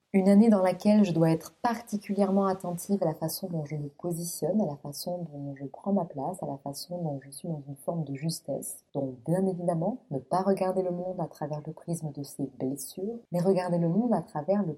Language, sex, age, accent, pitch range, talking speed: French, female, 30-49, French, 160-205 Hz, 230 wpm